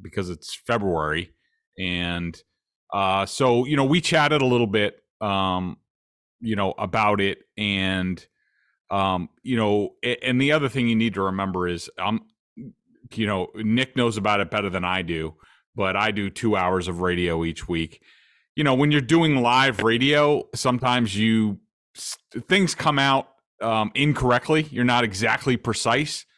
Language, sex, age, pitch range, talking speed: English, male, 30-49, 100-130 Hz, 155 wpm